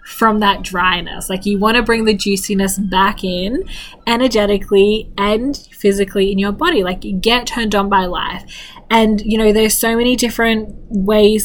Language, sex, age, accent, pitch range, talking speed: English, female, 20-39, Australian, 195-225 Hz, 175 wpm